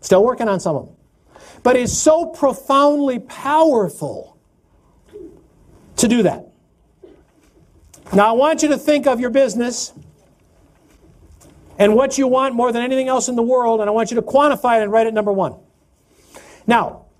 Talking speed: 165 wpm